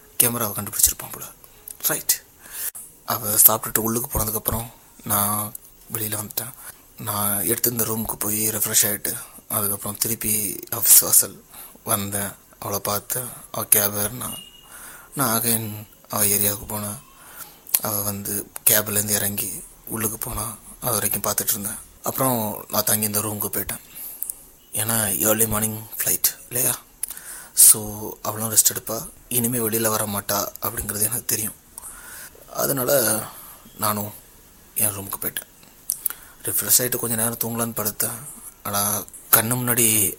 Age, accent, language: 30-49, native, Tamil